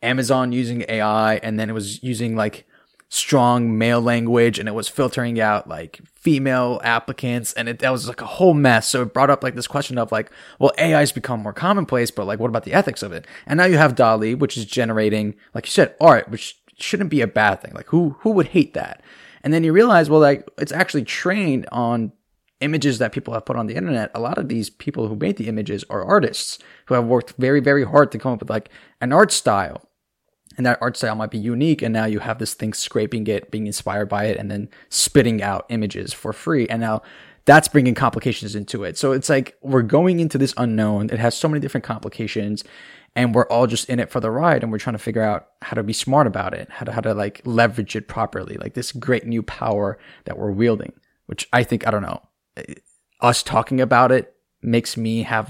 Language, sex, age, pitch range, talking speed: English, male, 20-39, 110-130 Hz, 230 wpm